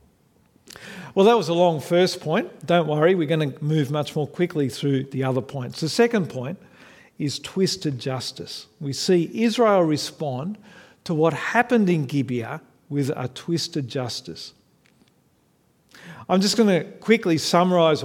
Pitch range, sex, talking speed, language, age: 135-180 Hz, male, 150 wpm, English, 50-69